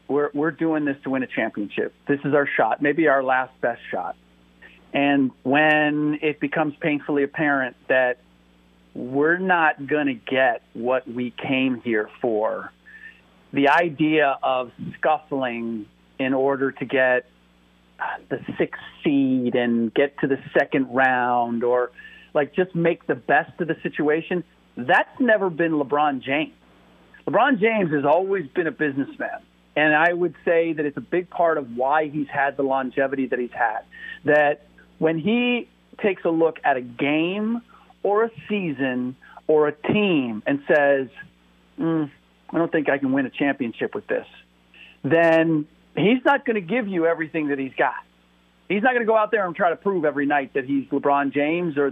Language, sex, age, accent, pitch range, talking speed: English, male, 40-59, American, 130-170 Hz, 170 wpm